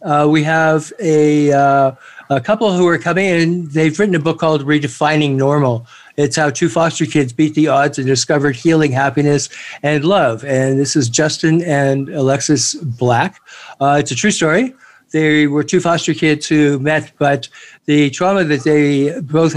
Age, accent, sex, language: 60-79, American, male, English